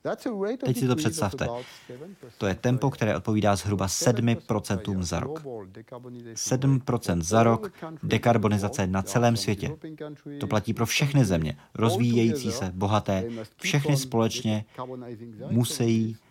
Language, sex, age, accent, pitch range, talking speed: Czech, male, 30-49, native, 100-130 Hz, 115 wpm